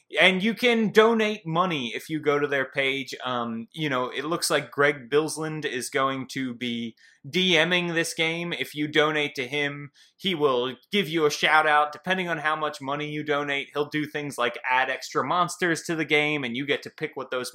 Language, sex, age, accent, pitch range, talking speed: English, male, 30-49, American, 135-180 Hz, 210 wpm